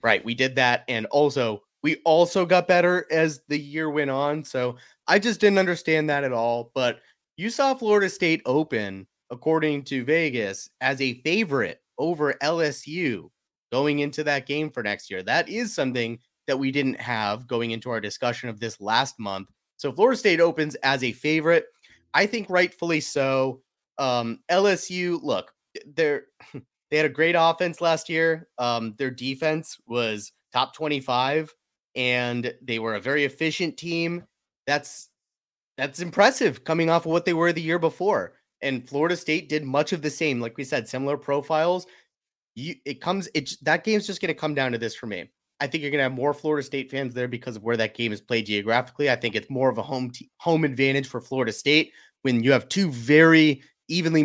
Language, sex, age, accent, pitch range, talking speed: English, male, 30-49, American, 125-165 Hz, 190 wpm